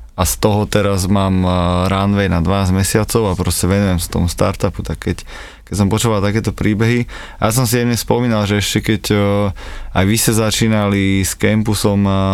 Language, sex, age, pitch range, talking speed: Slovak, male, 20-39, 95-105 Hz, 175 wpm